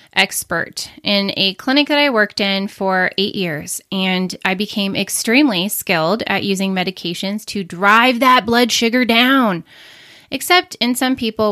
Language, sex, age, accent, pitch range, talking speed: English, female, 20-39, American, 195-250 Hz, 150 wpm